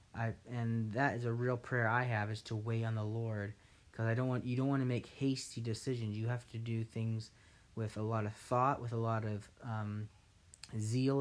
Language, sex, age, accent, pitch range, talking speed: English, male, 30-49, American, 105-125 Hz, 225 wpm